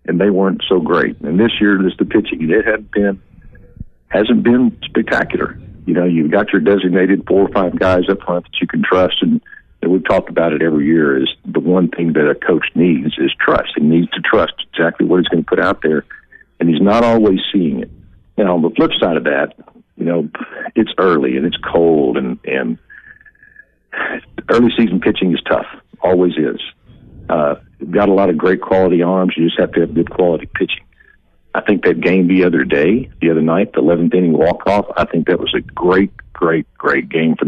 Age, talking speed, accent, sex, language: 60-79, 215 wpm, American, male, English